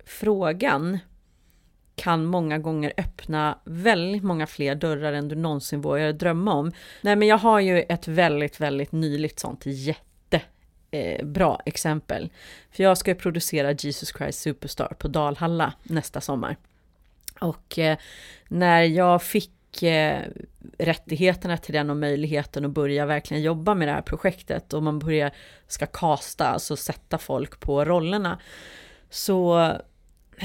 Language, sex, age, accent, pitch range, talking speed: Swedish, female, 30-49, native, 145-180 Hz, 130 wpm